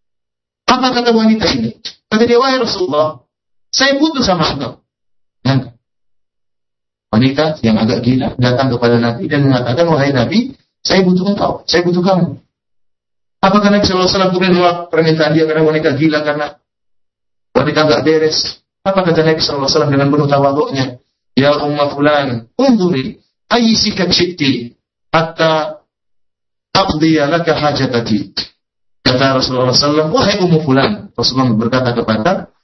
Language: Malay